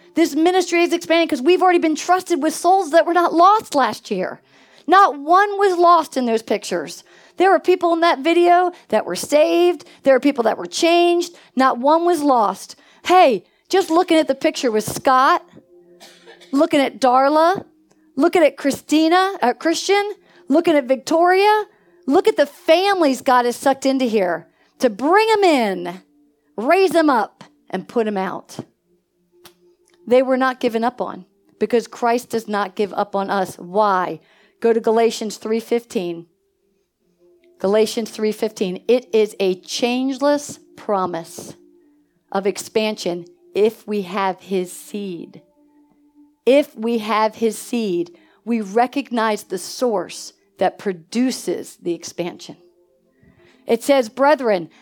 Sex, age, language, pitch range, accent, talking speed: female, 40-59, English, 200-325 Hz, American, 145 wpm